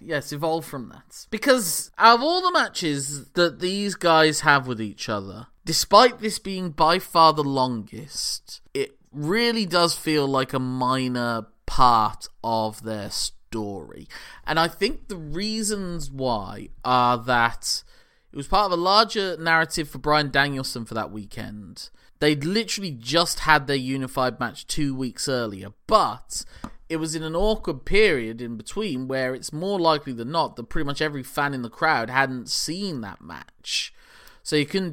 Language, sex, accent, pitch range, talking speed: English, male, British, 120-170 Hz, 165 wpm